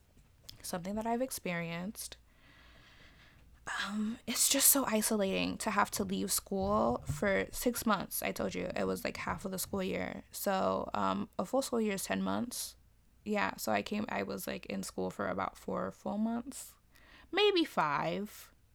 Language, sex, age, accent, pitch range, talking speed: English, female, 20-39, American, 175-240 Hz, 170 wpm